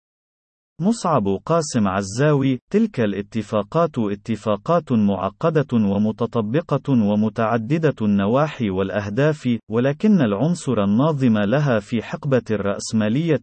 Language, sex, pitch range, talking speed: Arabic, male, 105-150 Hz, 80 wpm